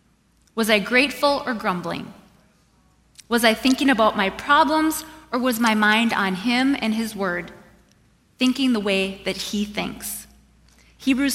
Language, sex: English, female